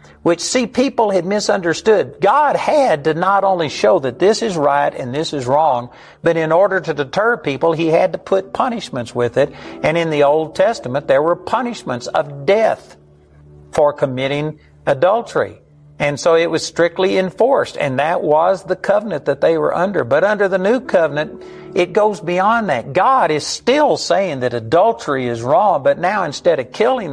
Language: English